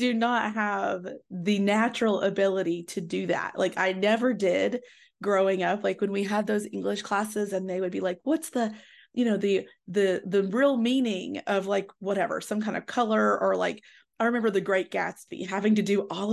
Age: 20-39